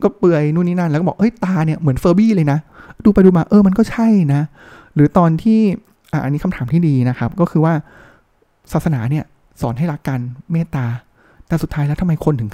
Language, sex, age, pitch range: Thai, male, 20-39, 140-175 Hz